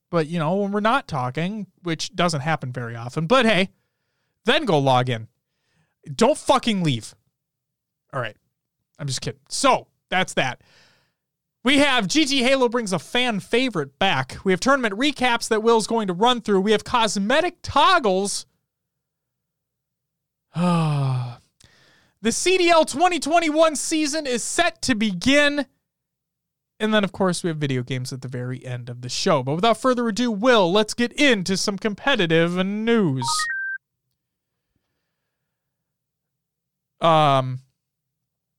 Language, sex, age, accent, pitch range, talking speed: English, male, 30-49, American, 140-225 Hz, 135 wpm